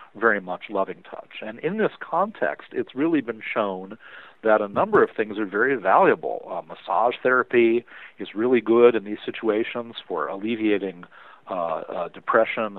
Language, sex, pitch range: English, male, 100-125 Hz